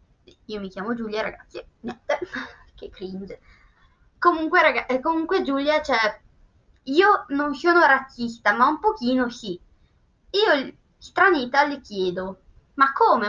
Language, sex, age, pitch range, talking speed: Italian, female, 20-39, 235-320 Hz, 120 wpm